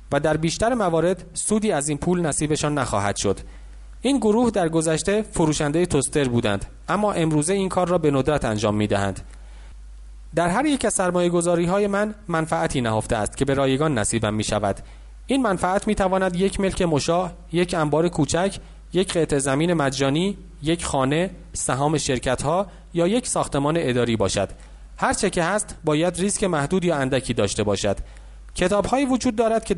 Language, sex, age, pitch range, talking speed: English, male, 30-49, 120-185 Hz, 165 wpm